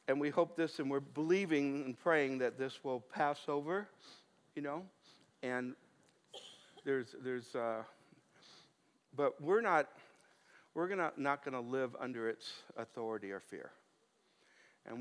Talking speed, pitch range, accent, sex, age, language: 135 wpm, 125-150 Hz, American, male, 60-79, English